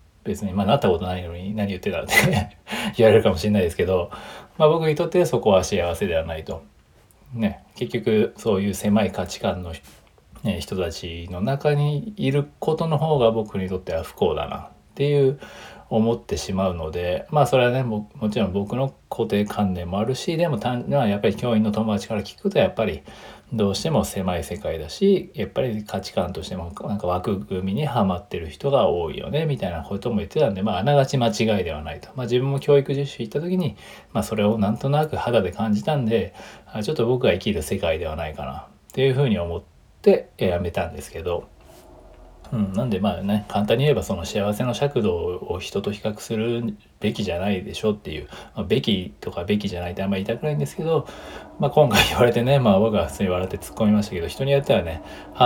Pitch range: 95-125 Hz